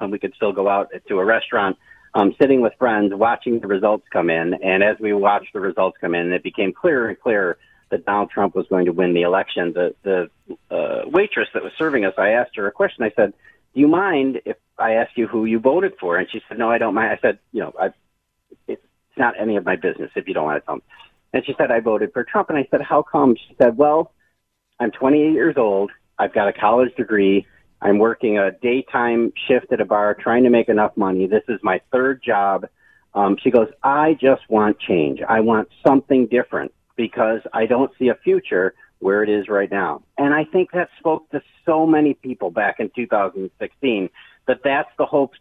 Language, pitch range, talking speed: English, 100-140 Hz, 220 wpm